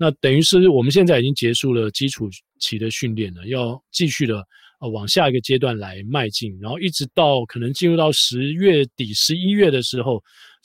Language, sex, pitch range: Chinese, male, 110-145 Hz